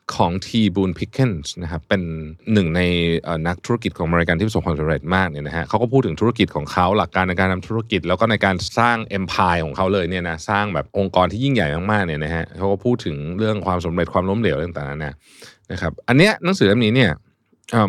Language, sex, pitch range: Thai, male, 90-125 Hz